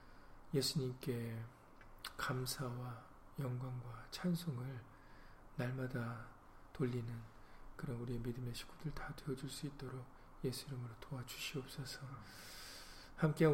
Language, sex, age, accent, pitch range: Korean, male, 40-59, native, 120-140 Hz